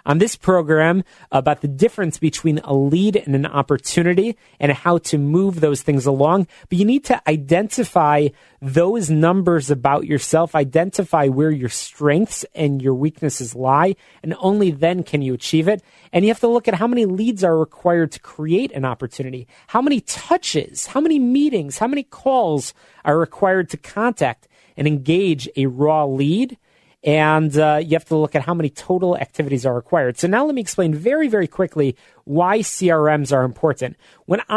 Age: 30-49